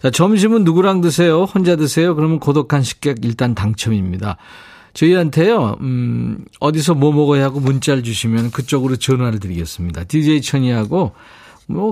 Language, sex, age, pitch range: Korean, male, 40-59, 110-165 Hz